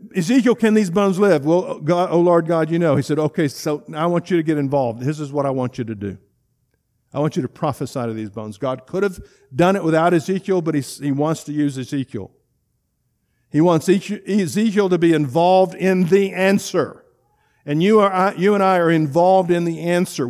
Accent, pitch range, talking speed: American, 140-190 Hz, 215 wpm